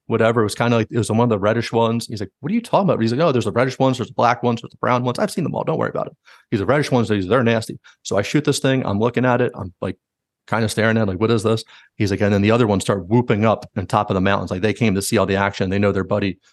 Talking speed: 355 wpm